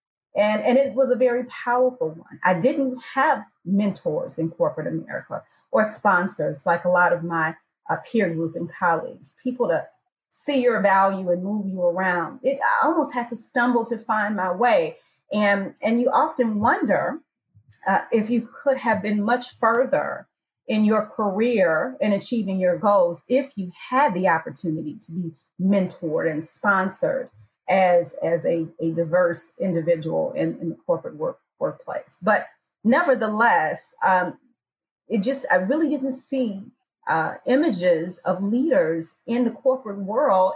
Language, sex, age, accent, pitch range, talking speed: English, female, 30-49, American, 180-250 Hz, 155 wpm